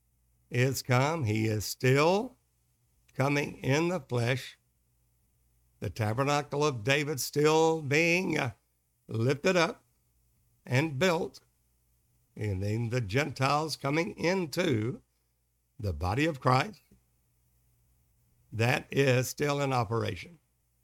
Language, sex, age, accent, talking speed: English, male, 60-79, American, 100 wpm